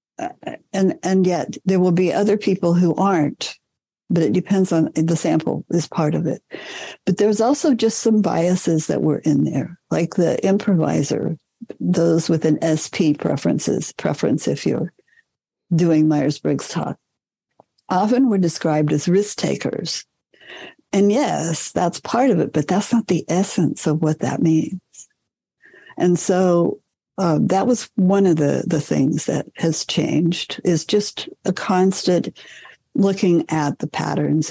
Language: English